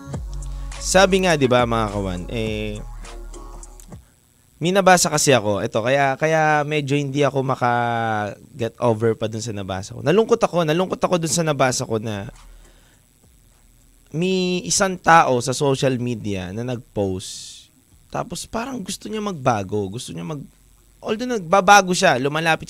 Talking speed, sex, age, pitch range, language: 135 wpm, male, 20-39, 115-160 Hz, Filipino